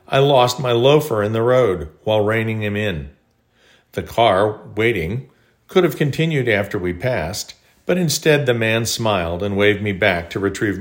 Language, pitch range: English, 105-140 Hz